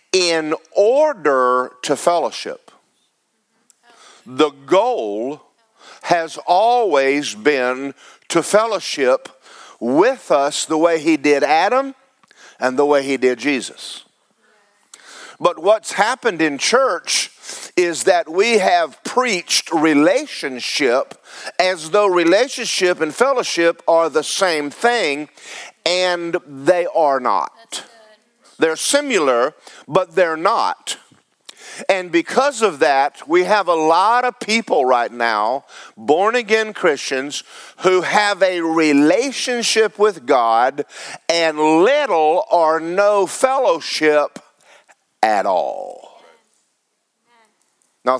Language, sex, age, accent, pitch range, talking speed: English, male, 50-69, American, 150-220 Hz, 100 wpm